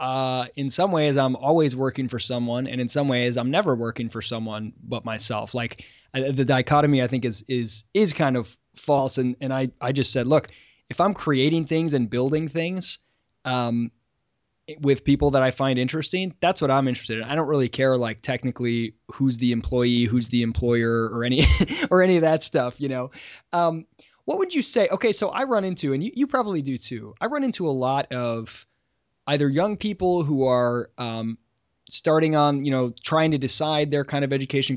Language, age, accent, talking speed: English, 20-39, American, 200 wpm